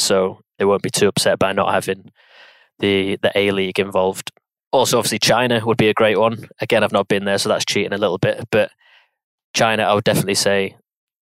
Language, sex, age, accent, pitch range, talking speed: English, male, 20-39, British, 100-115 Hz, 200 wpm